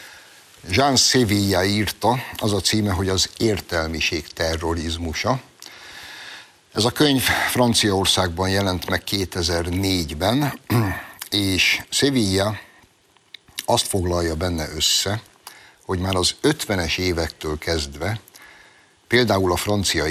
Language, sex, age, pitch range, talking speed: Hungarian, male, 60-79, 85-110 Hz, 95 wpm